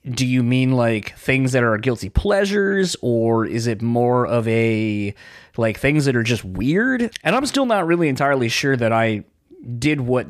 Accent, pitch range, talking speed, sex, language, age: American, 110-140 Hz, 185 wpm, male, English, 30-49